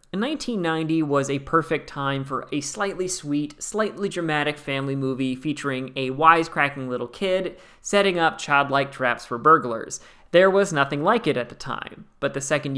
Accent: American